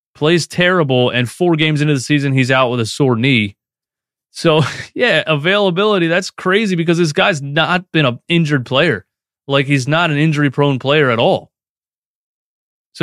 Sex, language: male, English